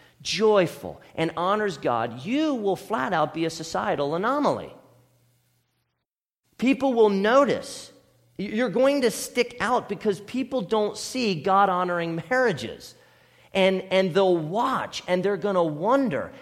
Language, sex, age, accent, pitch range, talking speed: English, male, 40-59, American, 155-225 Hz, 130 wpm